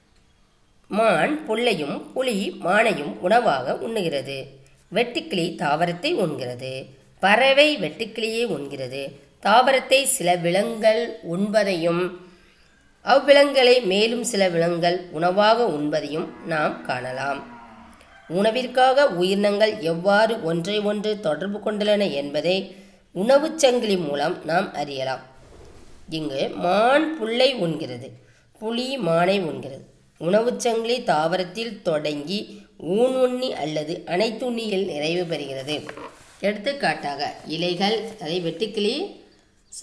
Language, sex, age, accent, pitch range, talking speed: Tamil, female, 20-39, native, 160-225 Hz, 85 wpm